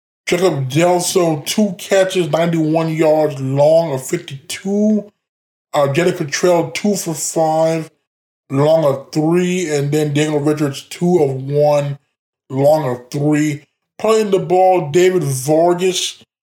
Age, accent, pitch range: 20-39, American, 145-180 Hz